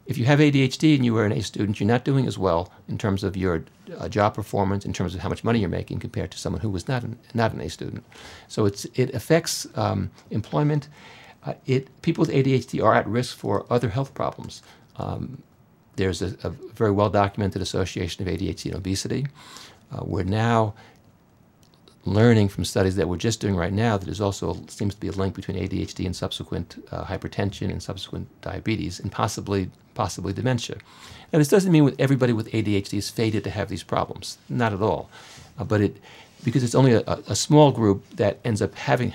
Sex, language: male, English